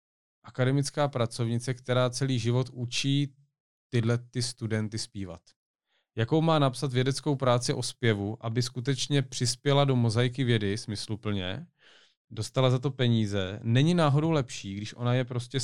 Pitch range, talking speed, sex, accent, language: 105-130 Hz, 130 wpm, male, native, Czech